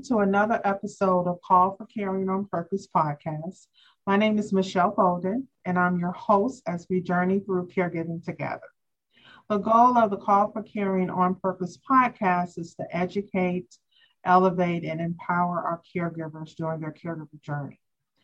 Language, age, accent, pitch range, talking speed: English, 40-59, American, 175-200 Hz, 155 wpm